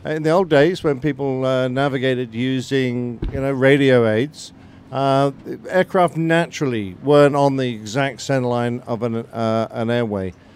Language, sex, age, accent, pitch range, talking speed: English, male, 50-69, British, 125-150 Hz, 150 wpm